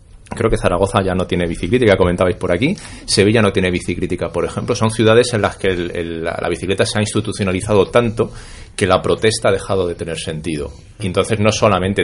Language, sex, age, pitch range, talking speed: Spanish, male, 30-49, 90-110 Hz, 205 wpm